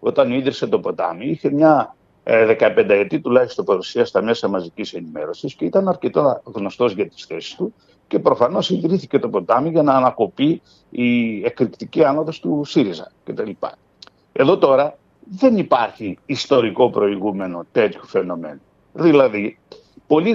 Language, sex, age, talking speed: Greek, male, 60-79, 135 wpm